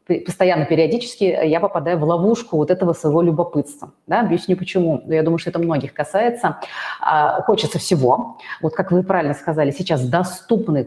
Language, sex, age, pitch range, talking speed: Russian, female, 30-49, 160-200 Hz, 155 wpm